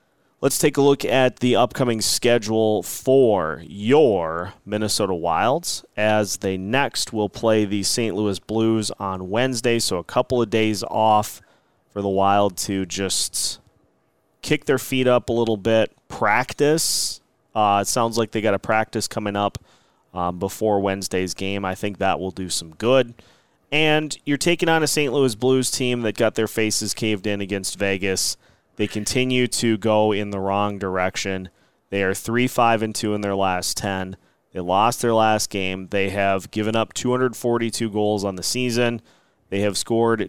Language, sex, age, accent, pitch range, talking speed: English, male, 30-49, American, 100-120 Hz, 165 wpm